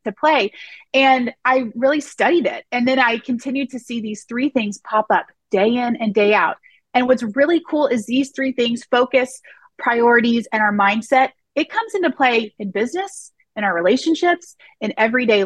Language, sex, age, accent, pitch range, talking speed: English, female, 30-49, American, 220-275 Hz, 180 wpm